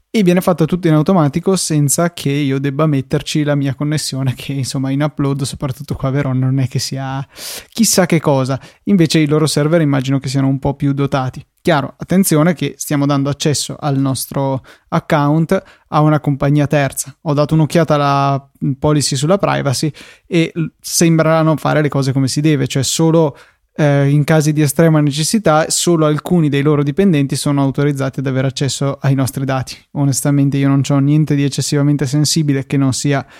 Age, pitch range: 20-39, 135-155 Hz